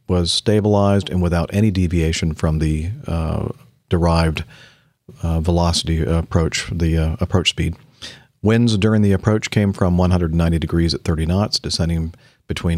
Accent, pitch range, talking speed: American, 85-105 Hz, 140 wpm